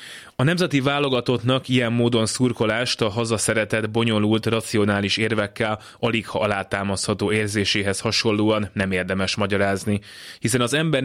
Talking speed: 120 wpm